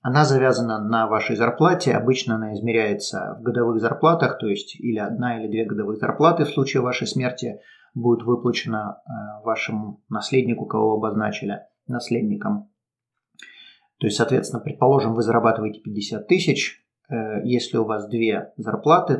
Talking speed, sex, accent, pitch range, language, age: 135 wpm, male, native, 115-145 Hz, Russian, 30-49